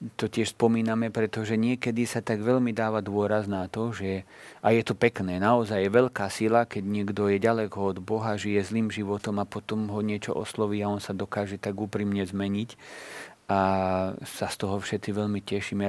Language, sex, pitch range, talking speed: Slovak, male, 100-110 Hz, 185 wpm